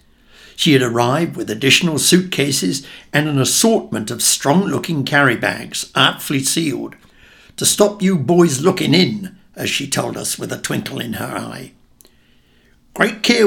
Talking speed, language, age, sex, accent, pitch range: 145 wpm, English, 60-79, male, British, 130-195 Hz